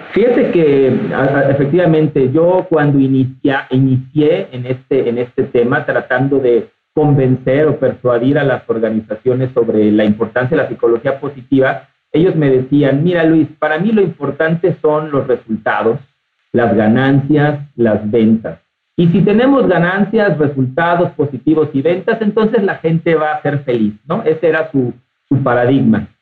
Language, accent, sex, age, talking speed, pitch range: Spanish, Mexican, male, 50-69, 140 wpm, 125-160 Hz